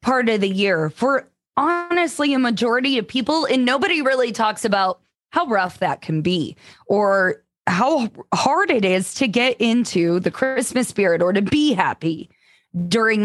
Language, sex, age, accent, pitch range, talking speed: English, female, 20-39, American, 200-270 Hz, 165 wpm